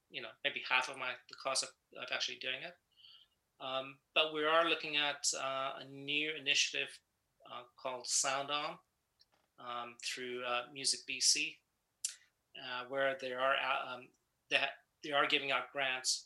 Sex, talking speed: male, 165 wpm